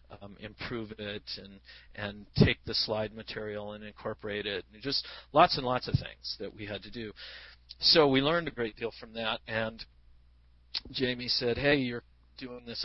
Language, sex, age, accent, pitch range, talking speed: English, male, 40-59, American, 105-125 Hz, 180 wpm